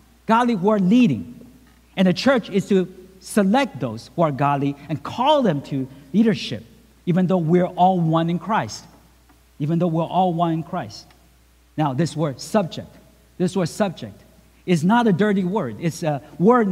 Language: English